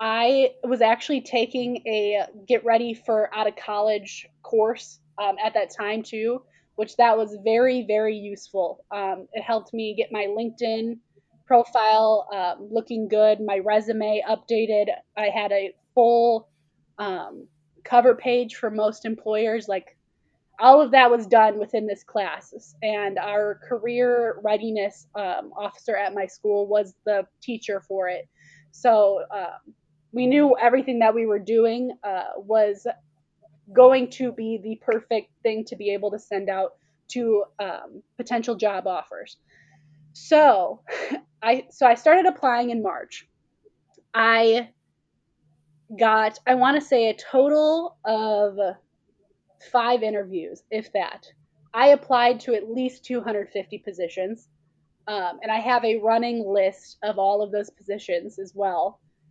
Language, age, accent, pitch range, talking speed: English, 20-39, American, 200-235 Hz, 140 wpm